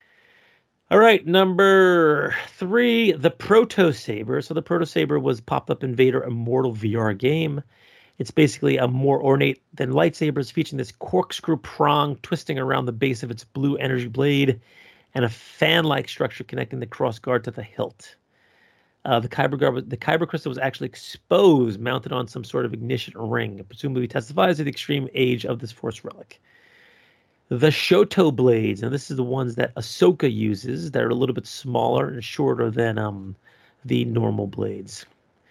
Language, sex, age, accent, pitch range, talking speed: English, male, 40-59, American, 115-150 Hz, 170 wpm